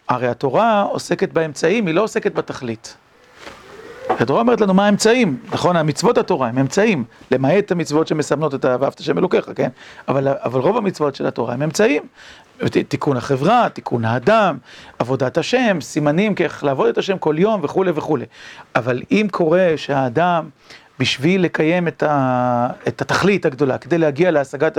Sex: male